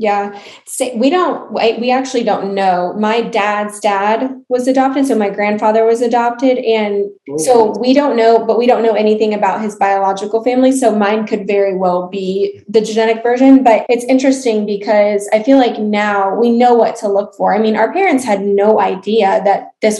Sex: female